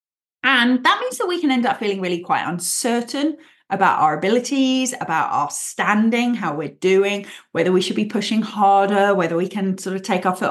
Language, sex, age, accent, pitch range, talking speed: English, female, 30-49, British, 195-275 Hz, 200 wpm